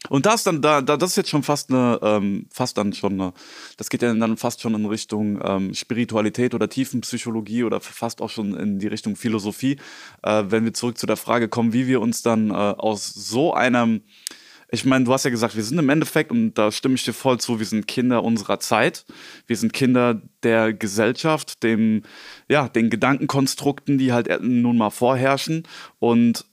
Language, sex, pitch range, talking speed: German, male, 110-130 Hz, 190 wpm